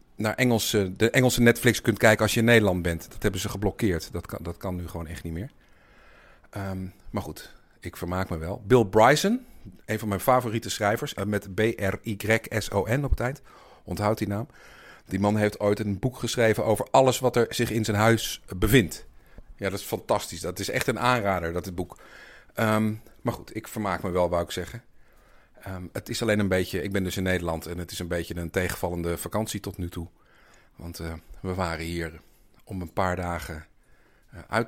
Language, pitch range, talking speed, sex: Dutch, 85-110 Hz, 195 wpm, male